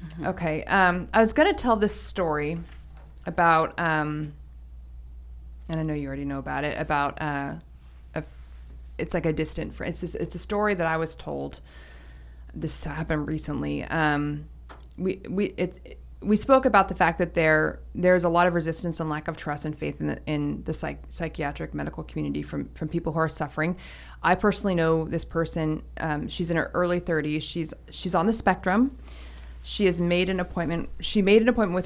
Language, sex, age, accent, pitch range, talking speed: English, female, 20-39, American, 145-175 Hz, 190 wpm